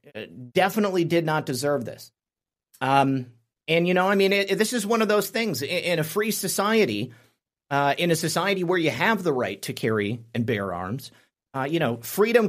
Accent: American